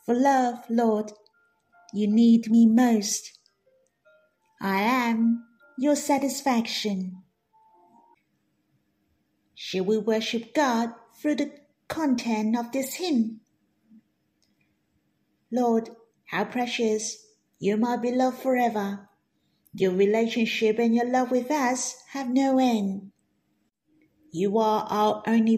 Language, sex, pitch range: Chinese, female, 220-265 Hz